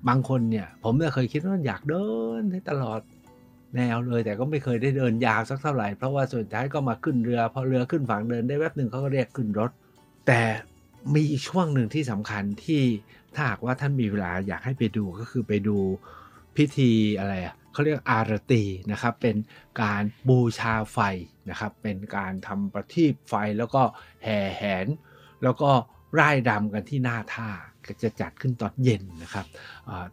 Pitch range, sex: 105-135 Hz, male